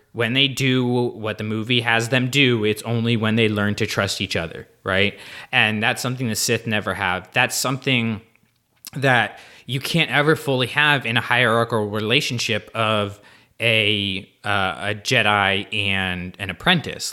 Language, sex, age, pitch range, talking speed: English, male, 20-39, 105-125 Hz, 160 wpm